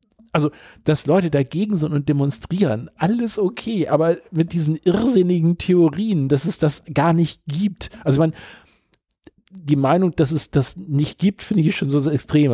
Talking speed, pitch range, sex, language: 170 wpm, 125-165 Hz, male, German